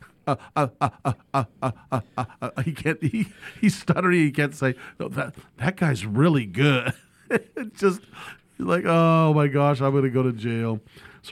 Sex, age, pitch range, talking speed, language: male, 40-59, 125-155 Hz, 185 wpm, English